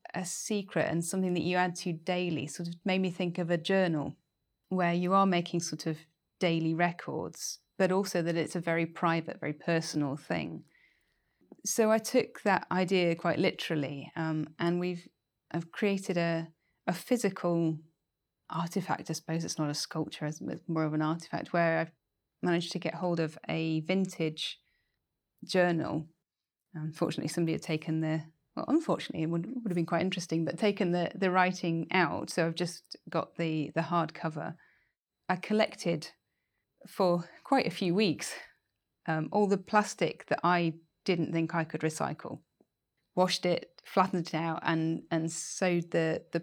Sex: female